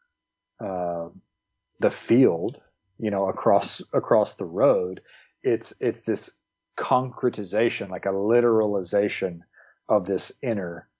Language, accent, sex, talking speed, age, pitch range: English, American, male, 105 wpm, 40-59, 90-110 Hz